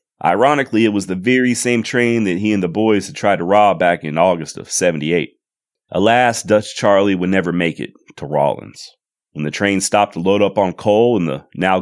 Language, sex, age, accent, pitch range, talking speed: English, male, 30-49, American, 90-105 Hz, 215 wpm